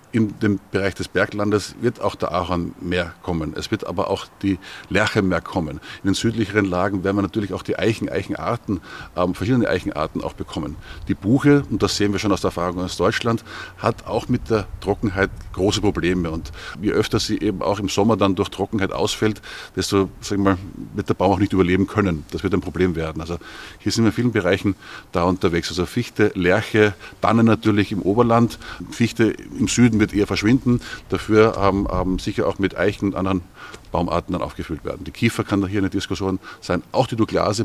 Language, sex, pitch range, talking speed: German, male, 95-115 Hz, 200 wpm